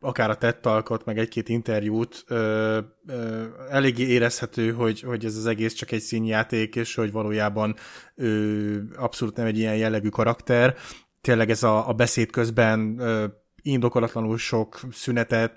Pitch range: 110-125 Hz